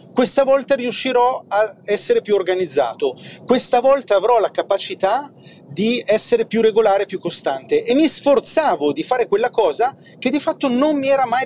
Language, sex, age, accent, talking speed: Italian, male, 30-49, native, 170 wpm